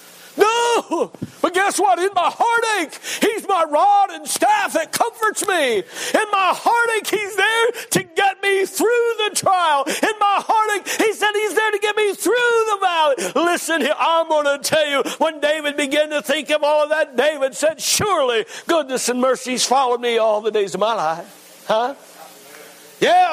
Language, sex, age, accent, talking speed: English, male, 60-79, American, 180 wpm